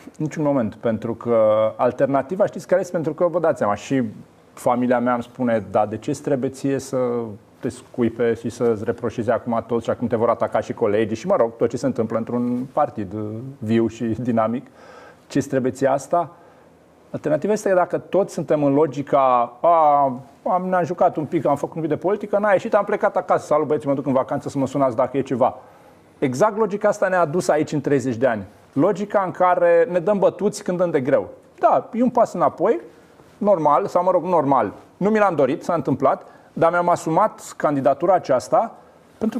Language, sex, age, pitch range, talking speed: Romanian, male, 40-59, 120-175 Hz, 200 wpm